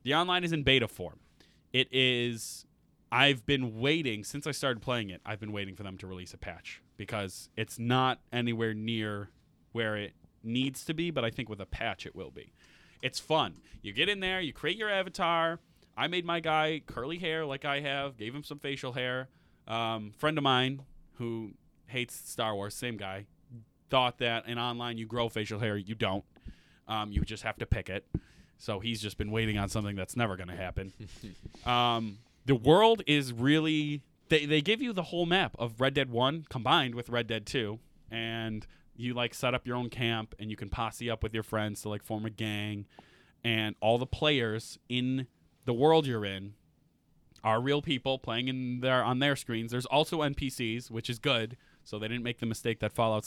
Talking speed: 205 wpm